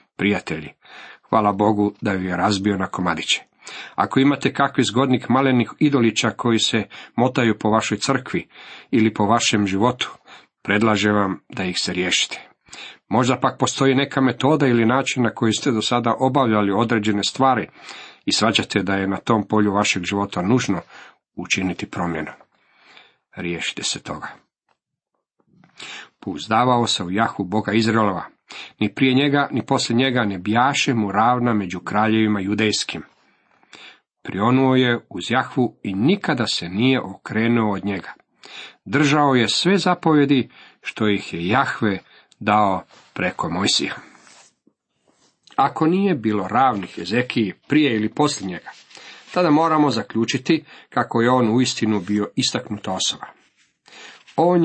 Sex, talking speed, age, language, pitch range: male, 135 wpm, 40-59, Croatian, 105-130 Hz